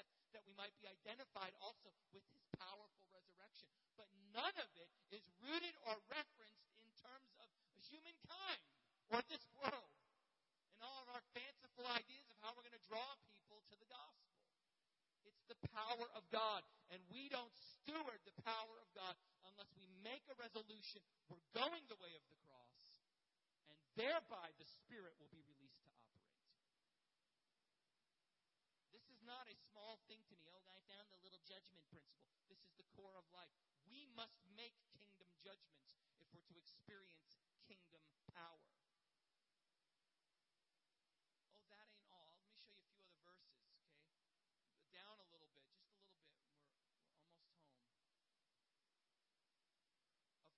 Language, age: English, 40-59